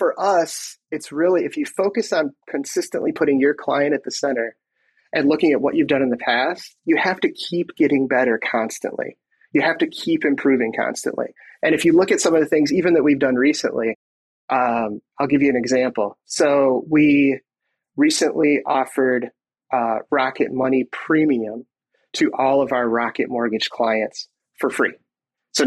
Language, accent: English, American